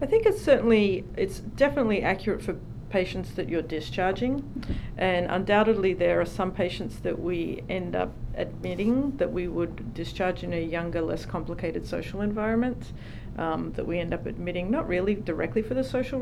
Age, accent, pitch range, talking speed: 40-59, Australian, 165-195 Hz, 170 wpm